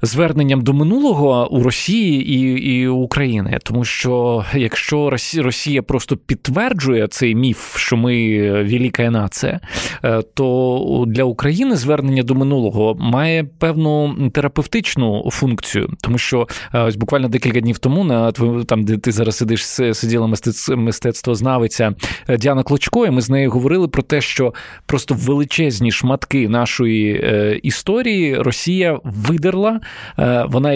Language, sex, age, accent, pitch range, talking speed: Ukrainian, male, 20-39, native, 120-150 Hz, 125 wpm